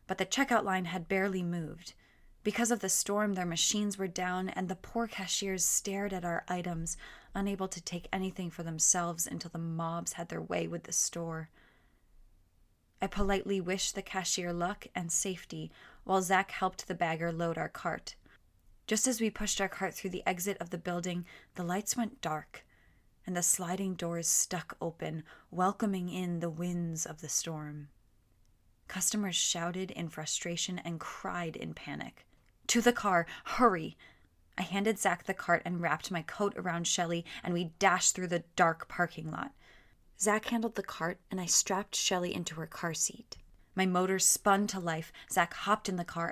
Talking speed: 175 wpm